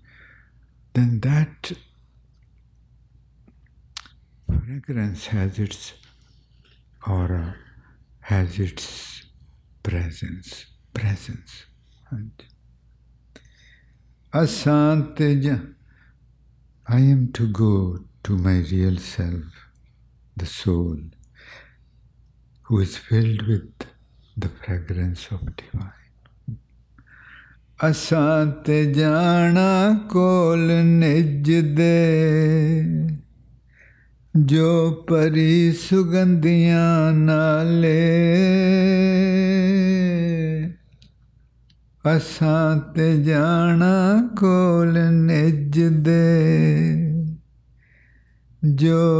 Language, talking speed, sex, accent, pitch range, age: English, 55 wpm, male, Indian, 110-165 Hz, 60-79